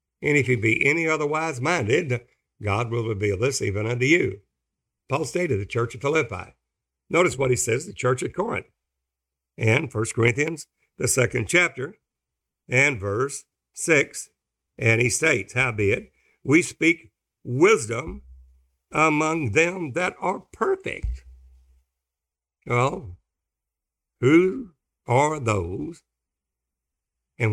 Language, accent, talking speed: English, American, 120 wpm